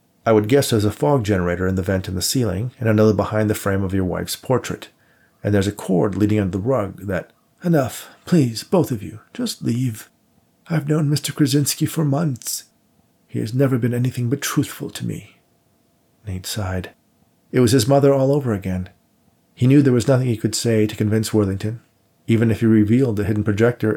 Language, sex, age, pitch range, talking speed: English, male, 40-59, 95-120 Hz, 200 wpm